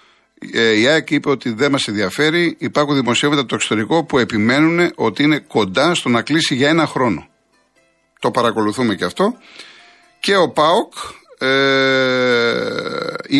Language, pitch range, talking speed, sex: Greek, 115-155 Hz, 140 wpm, male